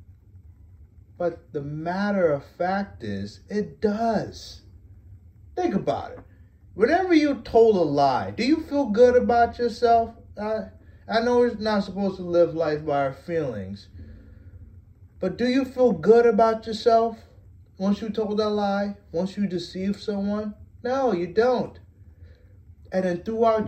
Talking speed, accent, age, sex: 140 wpm, American, 30-49, male